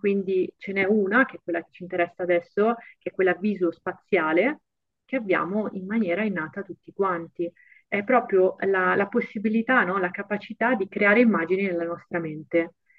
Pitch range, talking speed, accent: 180-215 Hz, 170 wpm, native